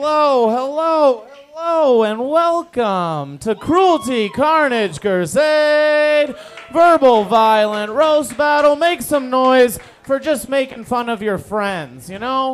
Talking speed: 120 wpm